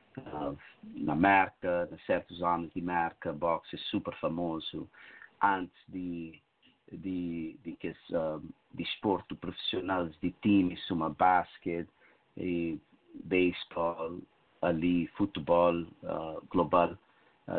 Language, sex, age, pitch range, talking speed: English, male, 50-69, 85-95 Hz, 110 wpm